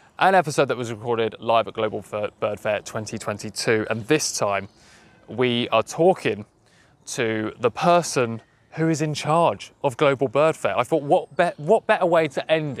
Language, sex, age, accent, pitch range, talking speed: English, male, 20-39, British, 120-165 Hz, 170 wpm